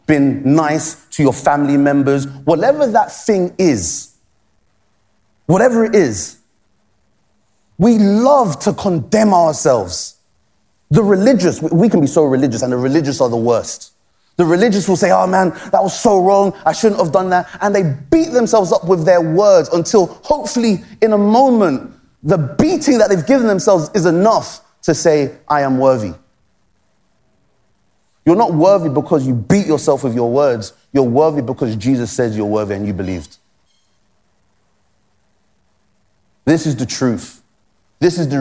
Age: 30-49